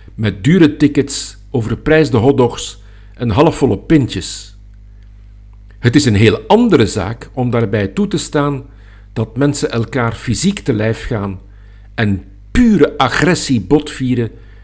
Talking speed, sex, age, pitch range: 125 wpm, male, 50-69, 100-140 Hz